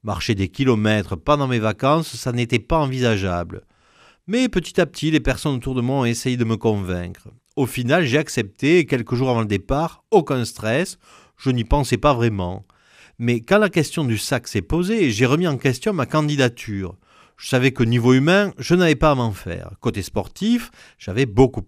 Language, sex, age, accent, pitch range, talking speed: French, male, 40-59, French, 105-150 Hz, 195 wpm